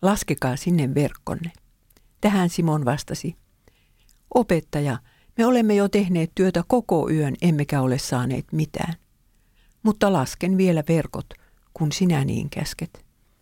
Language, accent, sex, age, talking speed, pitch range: English, Finnish, female, 60-79, 115 wpm, 135-180 Hz